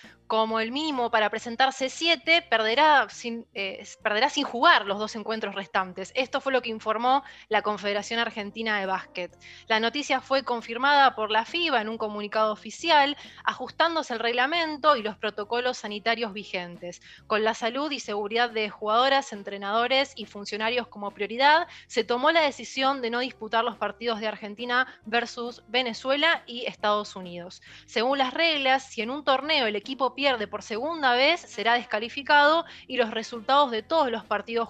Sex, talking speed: female, 165 wpm